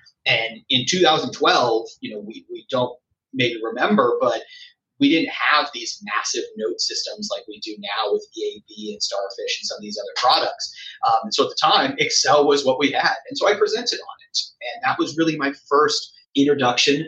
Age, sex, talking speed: 30-49, male, 195 wpm